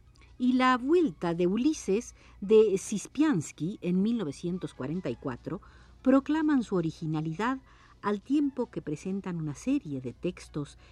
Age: 50-69